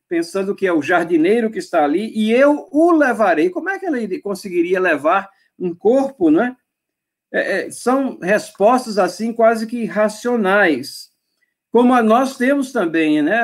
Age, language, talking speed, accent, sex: 50-69, Portuguese, 145 wpm, Brazilian, male